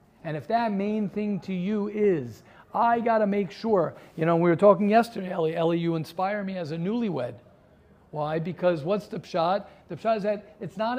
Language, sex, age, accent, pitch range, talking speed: English, male, 50-69, American, 160-210 Hz, 210 wpm